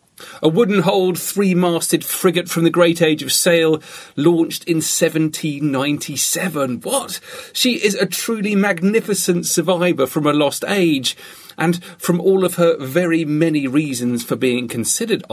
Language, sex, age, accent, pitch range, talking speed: English, male, 40-59, British, 135-180 Hz, 135 wpm